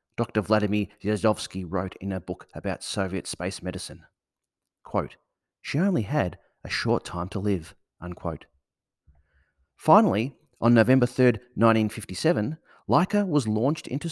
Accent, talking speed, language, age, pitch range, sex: Australian, 130 wpm, English, 30-49, 95-125 Hz, male